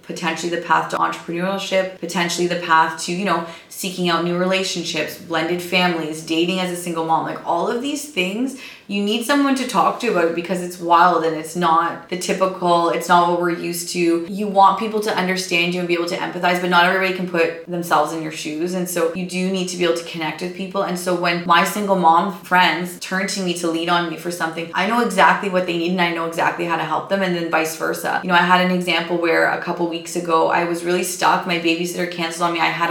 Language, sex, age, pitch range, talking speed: English, female, 20-39, 165-185 Hz, 250 wpm